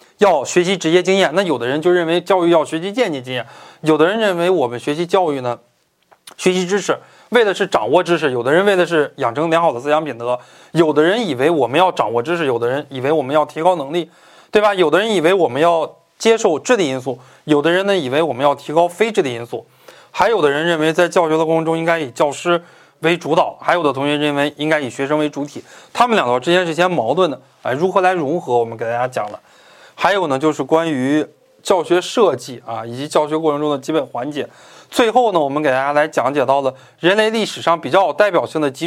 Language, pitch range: Chinese, 145-185 Hz